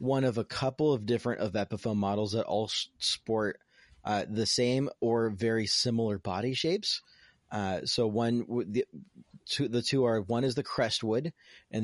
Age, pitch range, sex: 30-49, 105-120 Hz, male